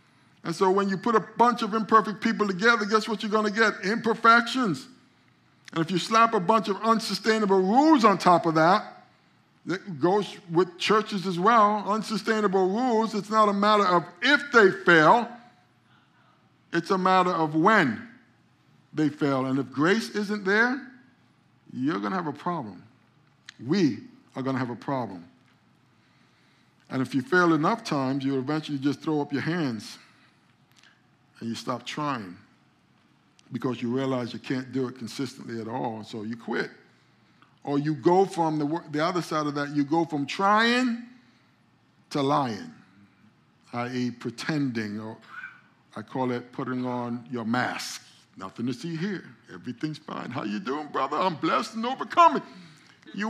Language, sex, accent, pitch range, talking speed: English, male, American, 145-225 Hz, 160 wpm